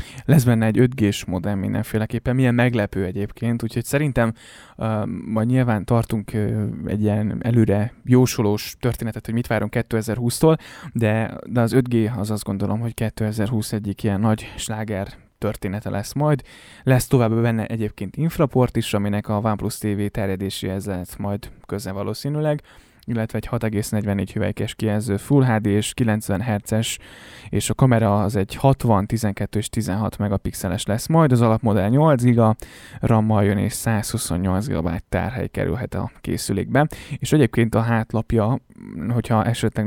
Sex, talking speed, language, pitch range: male, 140 wpm, Hungarian, 100-120 Hz